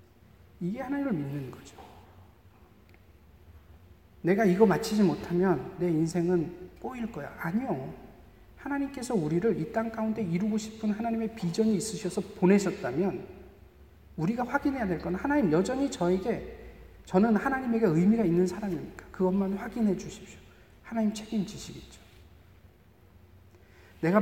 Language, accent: Korean, native